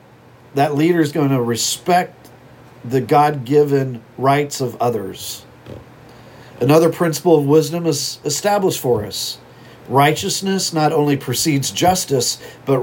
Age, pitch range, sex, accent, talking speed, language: 50-69, 125-160 Hz, male, American, 115 wpm, English